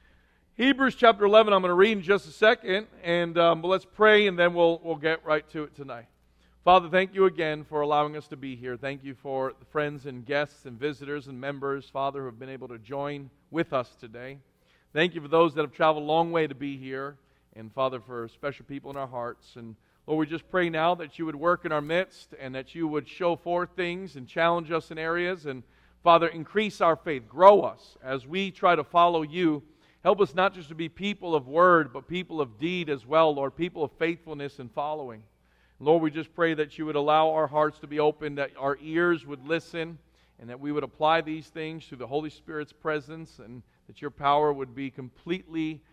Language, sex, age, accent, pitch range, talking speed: English, male, 40-59, American, 130-165 Hz, 225 wpm